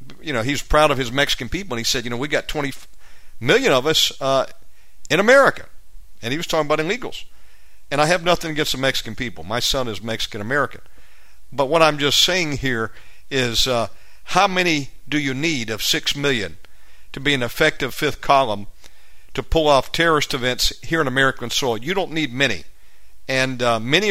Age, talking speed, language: 50-69, 195 wpm, English